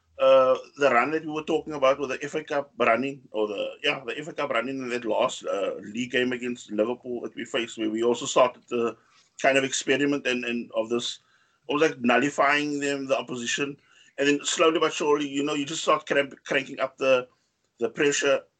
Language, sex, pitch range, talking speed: English, male, 125-160 Hz, 210 wpm